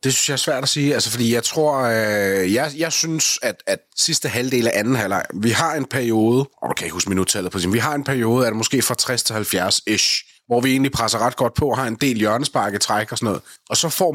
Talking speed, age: 260 wpm, 30-49